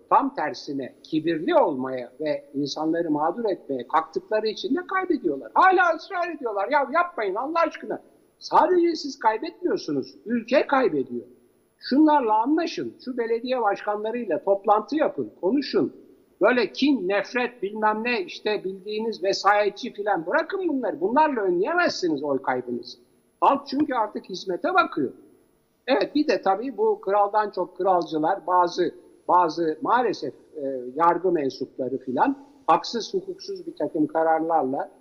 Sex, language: male, Turkish